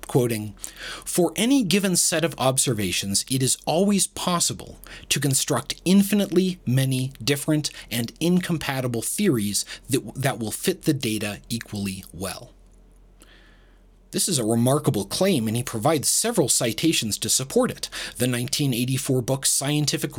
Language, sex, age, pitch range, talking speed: English, male, 30-49, 115-160 Hz, 130 wpm